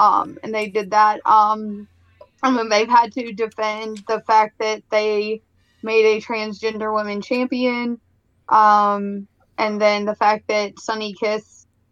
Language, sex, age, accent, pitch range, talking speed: English, female, 10-29, American, 205-225 Hz, 140 wpm